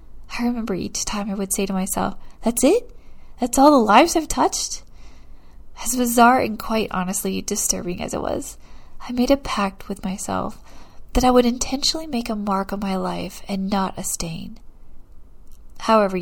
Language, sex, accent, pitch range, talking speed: English, female, American, 190-235 Hz, 175 wpm